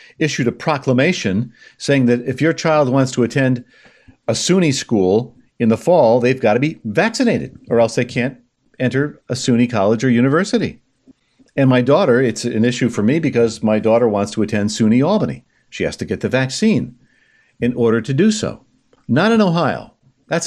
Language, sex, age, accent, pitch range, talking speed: English, male, 50-69, American, 115-145 Hz, 185 wpm